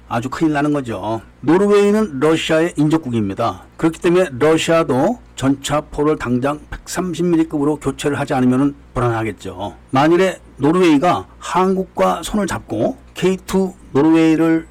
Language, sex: Korean, male